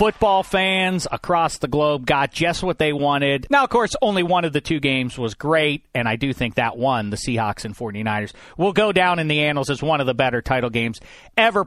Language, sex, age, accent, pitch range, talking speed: English, male, 40-59, American, 120-180 Hz, 230 wpm